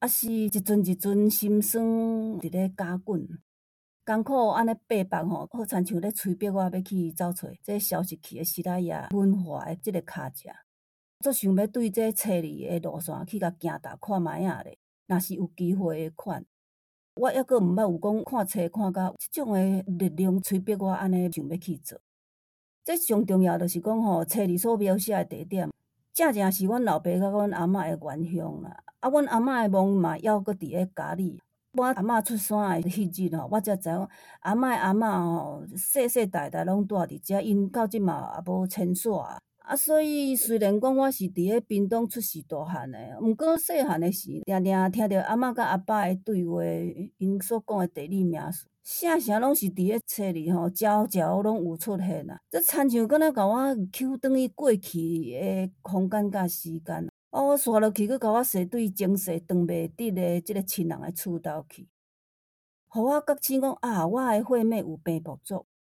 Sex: female